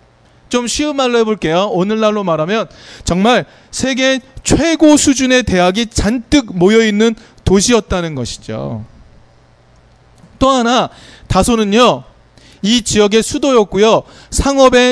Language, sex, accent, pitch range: Korean, male, native, 170-245 Hz